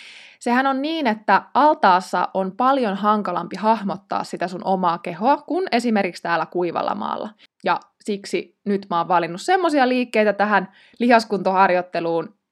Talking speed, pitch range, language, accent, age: 135 wpm, 180-260 Hz, Finnish, native, 20-39